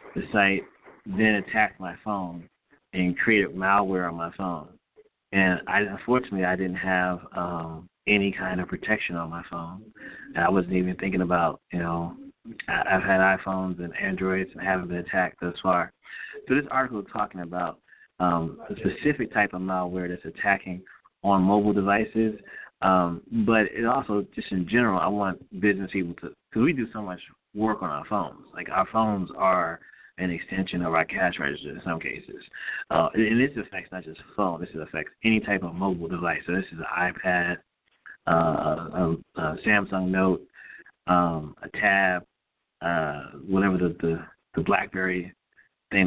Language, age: English, 30-49